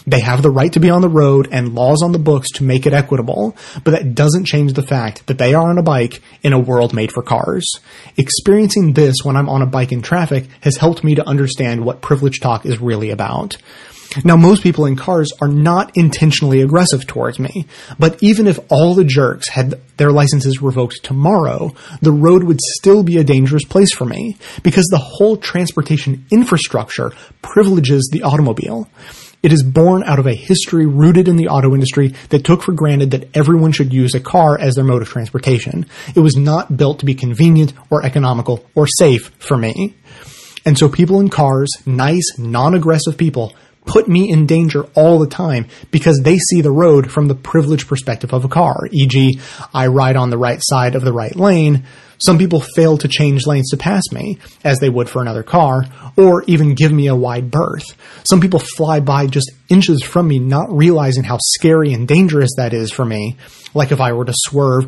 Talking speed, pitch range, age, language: 205 wpm, 130-165 Hz, 30-49, English